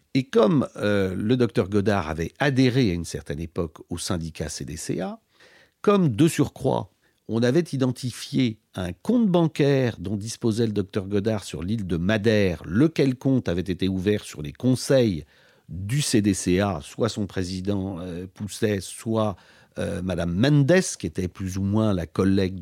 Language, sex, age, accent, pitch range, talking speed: French, male, 50-69, French, 90-130 Hz, 155 wpm